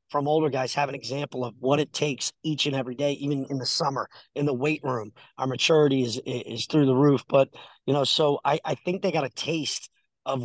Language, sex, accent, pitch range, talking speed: English, male, American, 130-160 Hz, 235 wpm